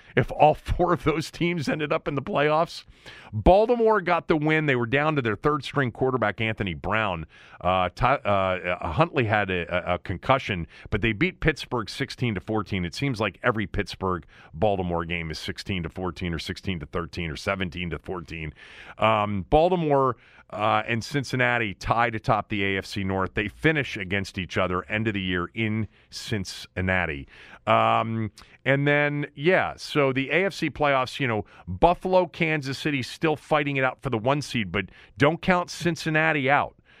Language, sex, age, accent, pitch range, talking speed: English, male, 40-59, American, 100-145 Hz, 165 wpm